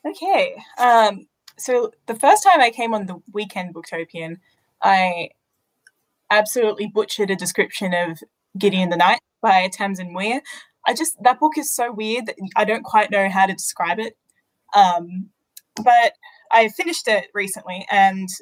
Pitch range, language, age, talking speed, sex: 185-235 Hz, English, 10-29, 155 wpm, female